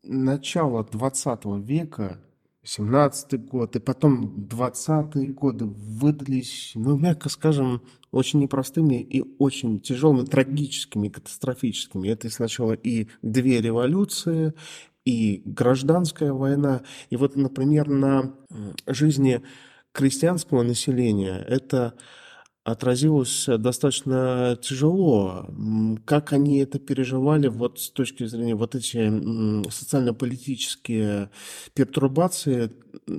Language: Russian